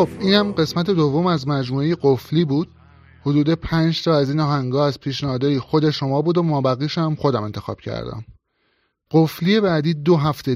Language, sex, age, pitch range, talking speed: Persian, male, 30-49, 125-160 Hz, 165 wpm